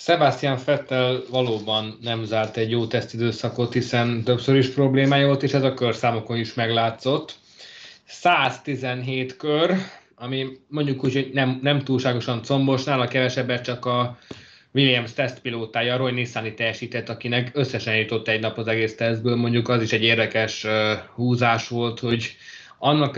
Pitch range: 115-130 Hz